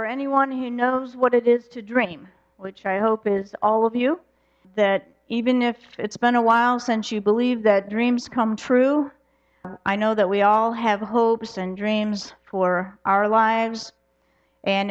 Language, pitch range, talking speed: English, 205-240 Hz, 170 wpm